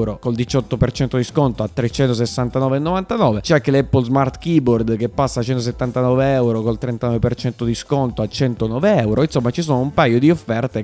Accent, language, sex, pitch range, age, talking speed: native, Italian, male, 115-135 Hz, 20-39, 165 wpm